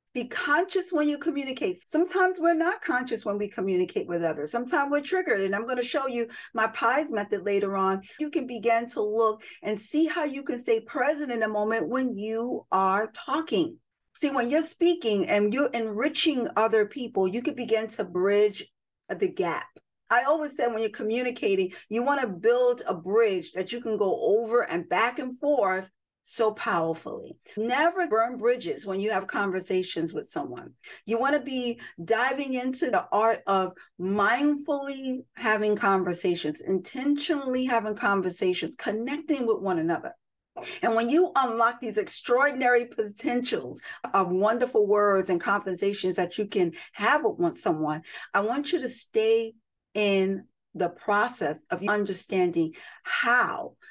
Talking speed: 160 wpm